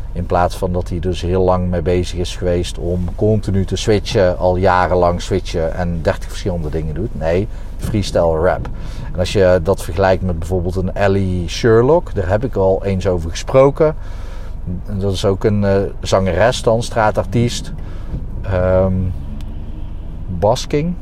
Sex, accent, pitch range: male, Dutch, 90-105 Hz